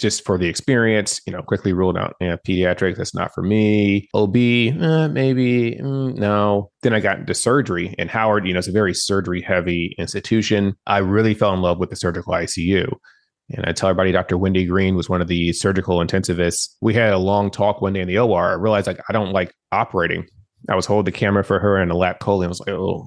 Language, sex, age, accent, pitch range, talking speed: English, male, 30-49, American, 90-105 Hz, 230 wpm